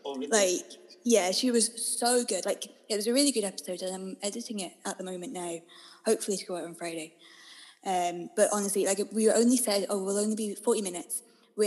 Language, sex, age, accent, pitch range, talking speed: English, female, 10-29, British, 190-230 Hz, 210 wpm